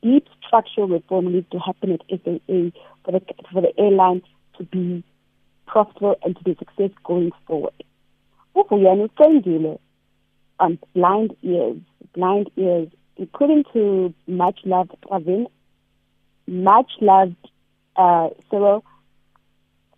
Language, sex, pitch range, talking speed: English, female, 180-215 Hz, 110 wpm